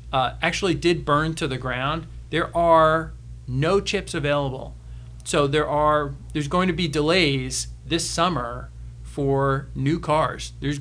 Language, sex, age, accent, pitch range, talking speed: English, male, 40-59, American, 125-165 Hz, 145 wpm